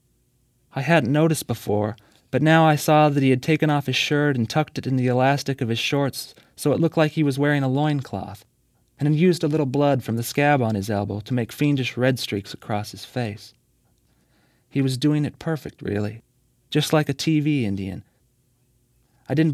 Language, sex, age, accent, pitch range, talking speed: English, male, 30-49, American, 115-145 Hz, 205 wpm